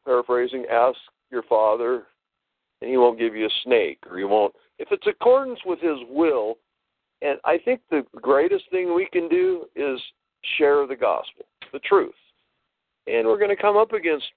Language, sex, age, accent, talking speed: English, male, 50-69, American, 175 wpm